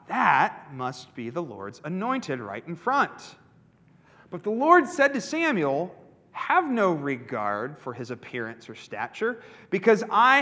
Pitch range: 150-240 Hz